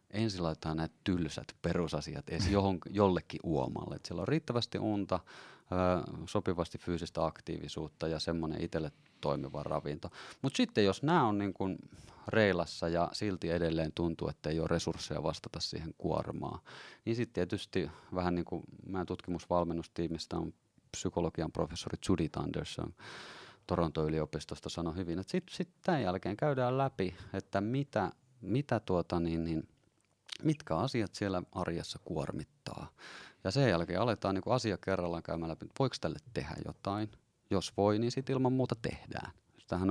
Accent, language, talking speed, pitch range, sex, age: native, Finnish, 140 wpm, 85-105 Hz, male, 30-49